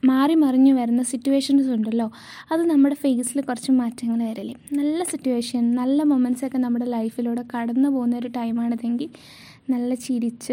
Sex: female